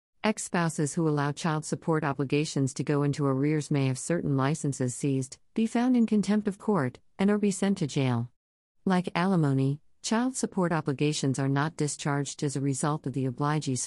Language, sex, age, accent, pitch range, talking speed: English, female, 50-69, American, 130-165 Hz, 175 wpm